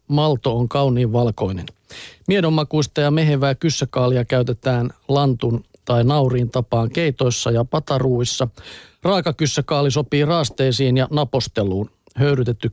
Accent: native